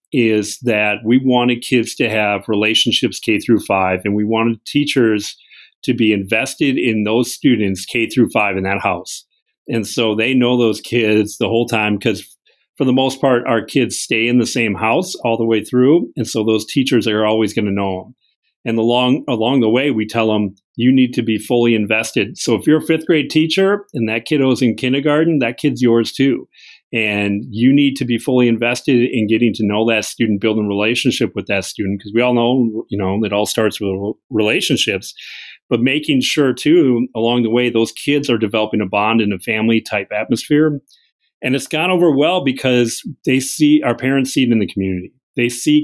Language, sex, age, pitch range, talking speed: English, male, 40-59, 110-130 Hz, 205 wpm